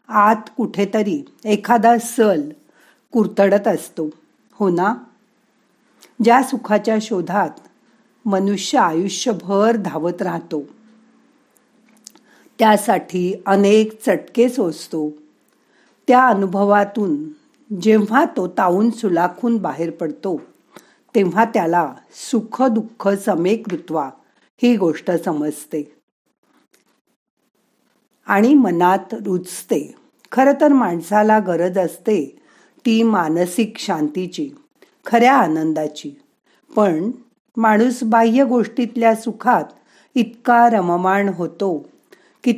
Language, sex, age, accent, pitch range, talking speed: Marathi, female, 50-69, native, 180-235 Hz, 80 wpm